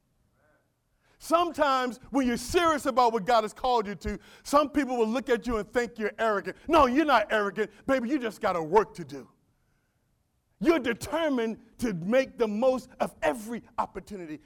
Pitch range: 140-220 Hz